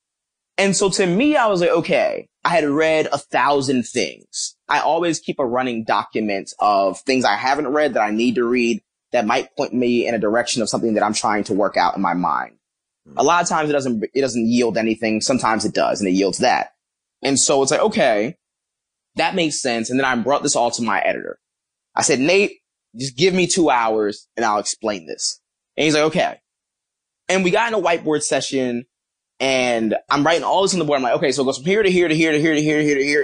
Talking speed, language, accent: 235 wpm, English, American